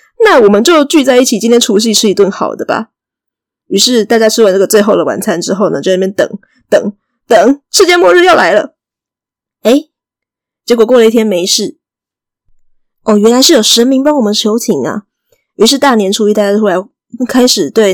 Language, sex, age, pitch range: Chinese, female, 20-39, 205-265 Hz